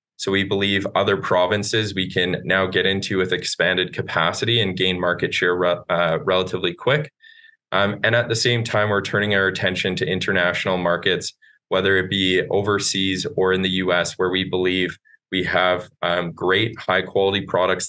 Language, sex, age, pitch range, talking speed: English, male, 20-39, 90-105 Hz, 170 wpm